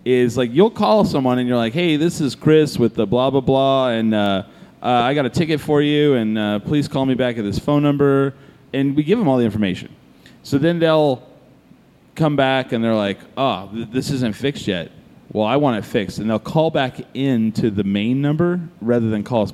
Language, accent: English, American